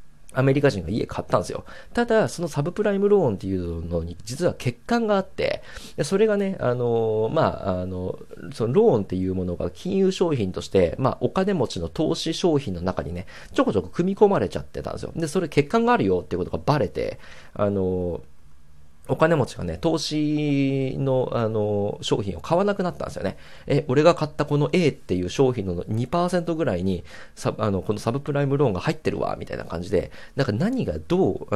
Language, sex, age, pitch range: Japanese, male, 40-59, 95-150 Hz